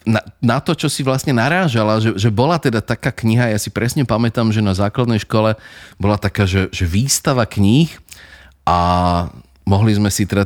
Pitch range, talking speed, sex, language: 95-115 Hz, 185 wpm, male, Slovak